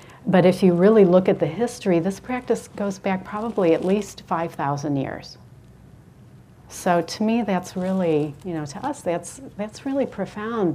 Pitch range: 155-190 Hz